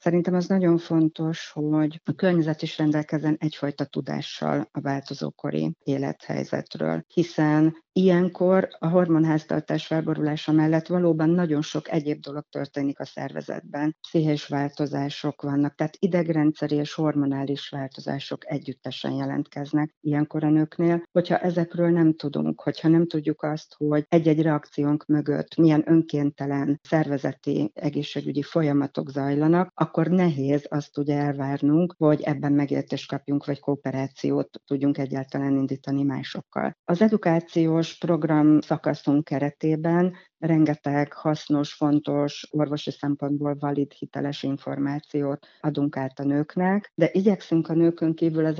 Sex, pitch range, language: female, 145-160 Hz, Hungarian